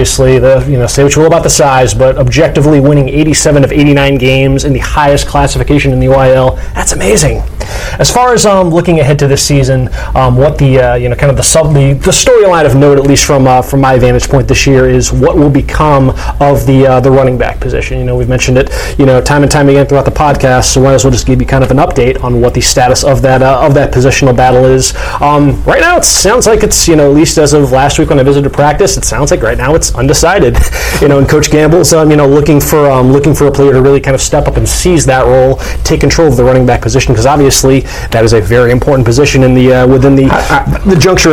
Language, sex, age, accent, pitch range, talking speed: English, male, 30-49, American, 130-145 Hz, 275 wpm